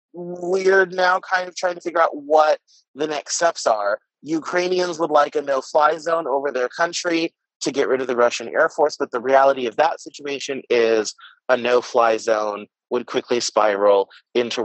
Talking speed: 180 wpm